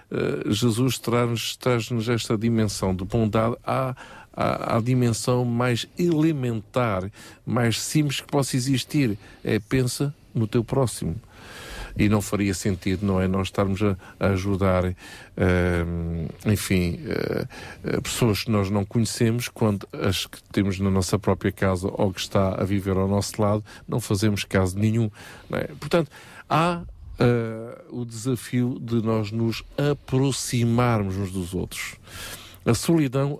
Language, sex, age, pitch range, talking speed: Portuguese, male, 50-69, 95-115 Hz, 140 wpm